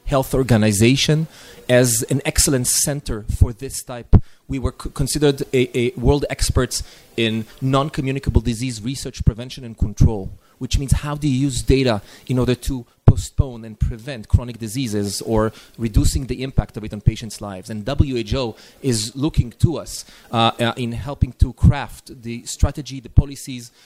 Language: Hebrew